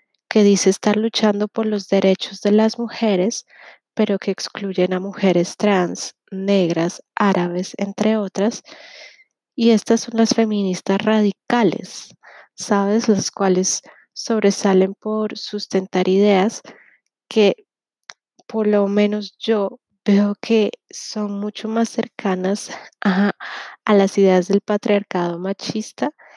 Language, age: Spanish, 20-39